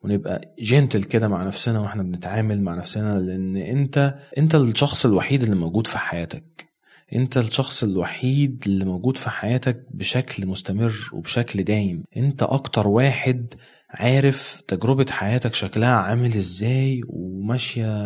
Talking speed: 130 wpm